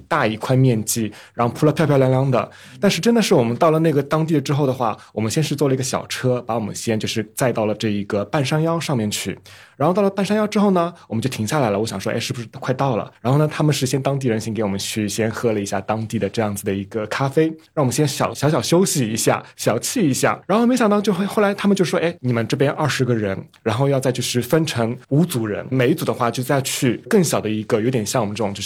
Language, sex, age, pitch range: Chinese, male, 20-39, 110-140 Hz